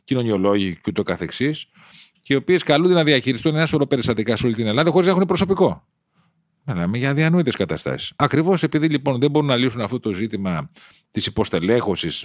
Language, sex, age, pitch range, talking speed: Greek, male, 40-59, 110-160 Hz, 160 wpm